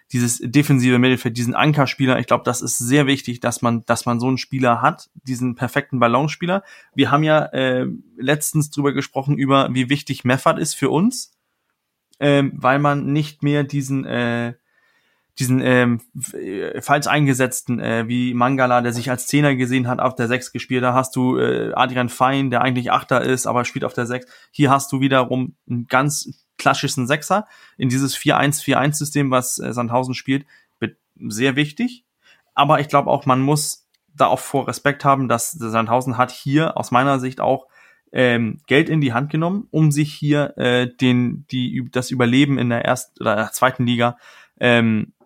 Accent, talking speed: German, 175 wpm